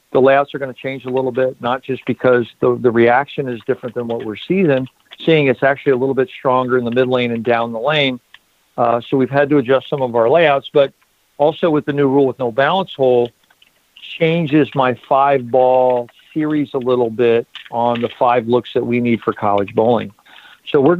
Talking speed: 215 wpm